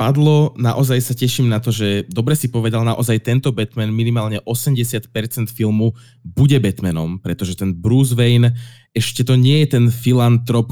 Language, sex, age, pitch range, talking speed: Slovak, male, 20-39, 105-125 Hz, 155 wpm